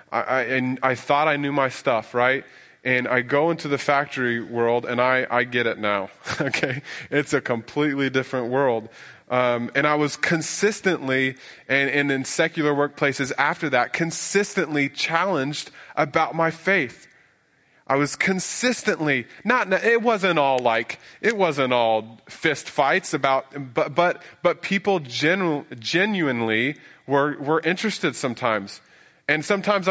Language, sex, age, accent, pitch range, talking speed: English, male, 20-39, American, 120-160 Hz, 150 wpm